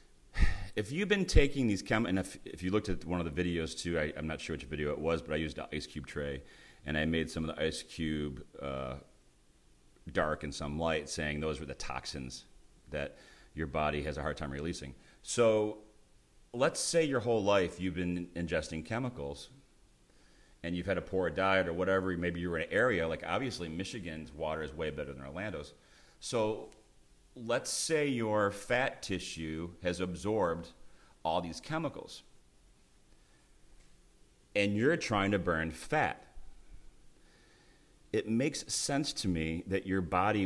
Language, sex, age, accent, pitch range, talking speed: English, male, 40-59, American, 75-95 Hz, 170 wpm